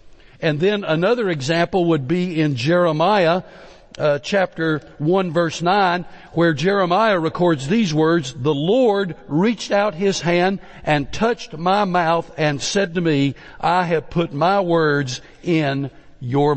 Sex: male